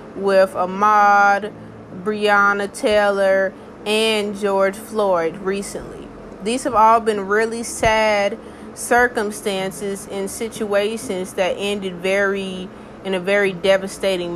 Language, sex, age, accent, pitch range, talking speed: English, female, 20-39, American, 195-240 Hz, 100 wpm